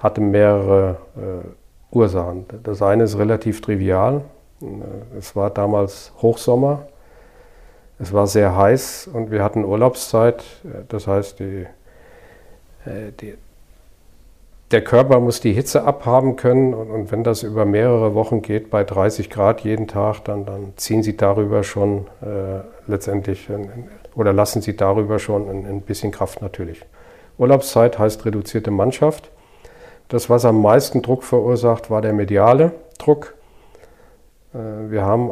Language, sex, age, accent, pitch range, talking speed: German, male, 50-69, German, 100-120 Hz, 130 wpm